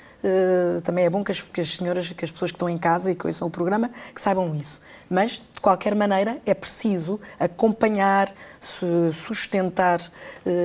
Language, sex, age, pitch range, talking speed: Portuguese, female, 20-39, 165-195 Hz, 190 wpm